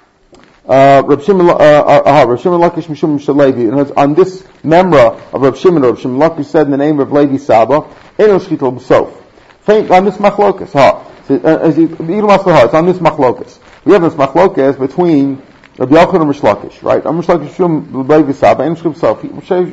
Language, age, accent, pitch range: English, 40-59, American, 140-170 Hz